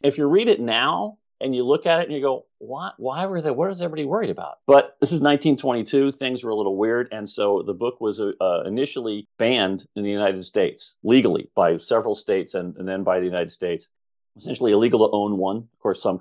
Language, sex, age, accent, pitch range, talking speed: English, male, 40-59, American, 95-115 Hz, 230 wpm